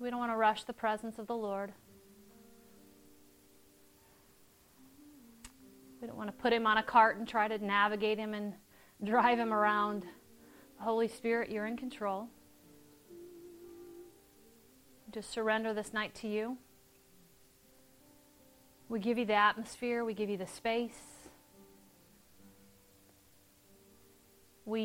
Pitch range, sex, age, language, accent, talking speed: 205-260 Hz, female, 30-49, English, American, 120 wpm